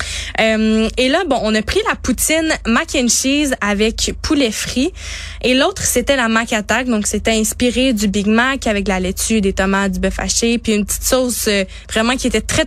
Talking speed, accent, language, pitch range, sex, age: 210 wpm, Canadian, French, 215-260 Hz, female, 20-39